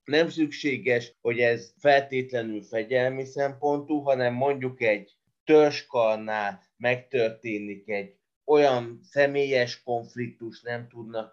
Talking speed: 95 wpm